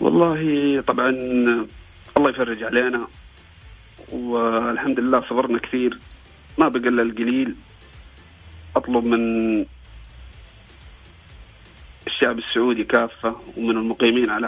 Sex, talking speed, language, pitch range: male, 85 wpm, Arabic, 110-140 Hz